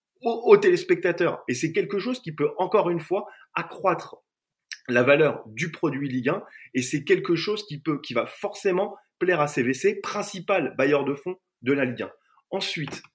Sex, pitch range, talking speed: male, 155-235 Hz, 180 wpm